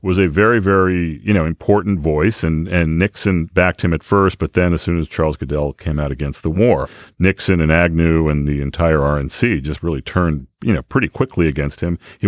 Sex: male